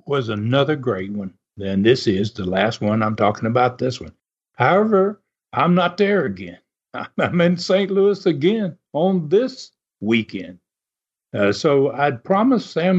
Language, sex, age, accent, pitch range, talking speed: English, male, 60-79, American, 135-185 Hz, 150 wpm